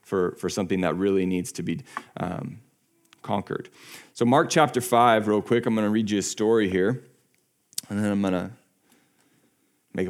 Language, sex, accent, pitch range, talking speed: English, male, American, 100-125 Hz, 165 wpm